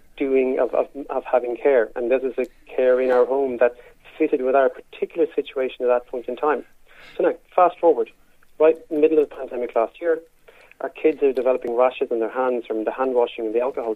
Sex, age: male, 40-59